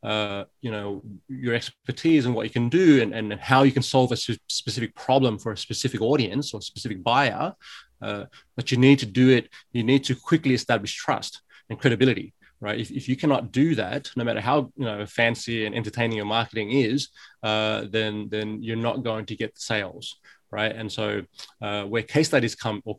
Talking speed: 210 wpm